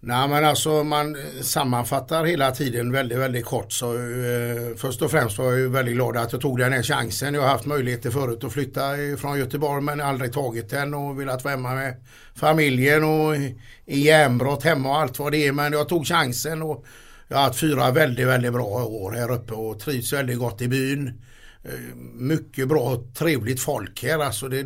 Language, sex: English, male